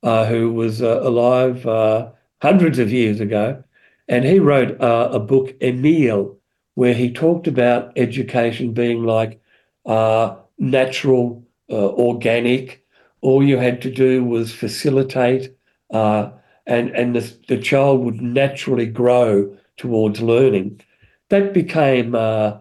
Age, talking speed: 50-69, 130 wpm